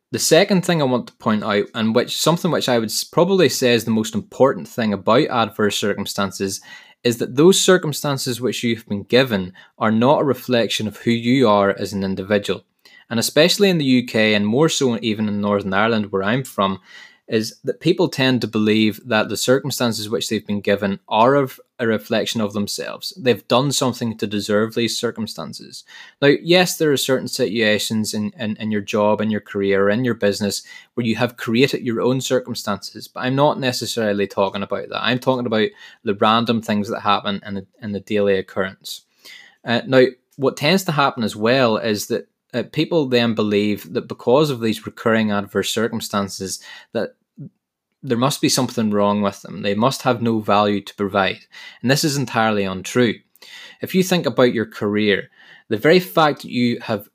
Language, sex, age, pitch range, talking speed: English, male, 20-39, 105-125 Hz, 190 wpm